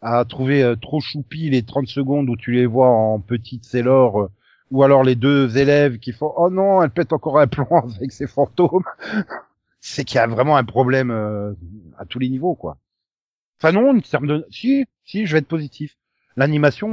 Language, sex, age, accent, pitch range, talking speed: French, male, 40-59, French, 105-145 Hz, 205 wpm